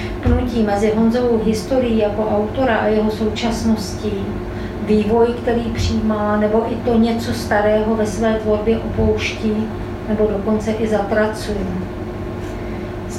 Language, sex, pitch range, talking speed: Czech, female, 210-230 Hz, 115 wpm